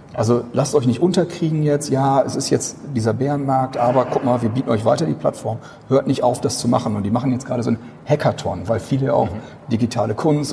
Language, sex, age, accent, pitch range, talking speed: German, male, 40-59, German, 115-140 Hz, 230 wpm